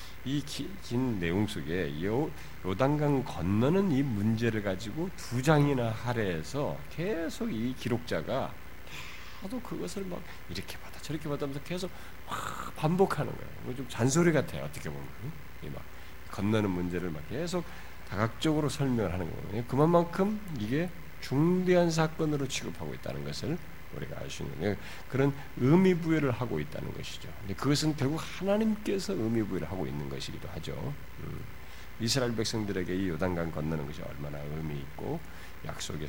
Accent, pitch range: native, 85-140 Hz